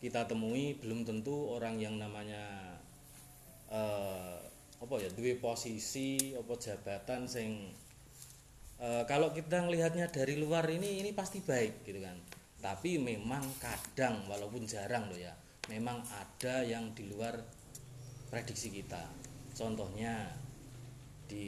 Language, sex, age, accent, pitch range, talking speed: Indonesian, male, 30-49, native, 100-130 Hz, 120 wpm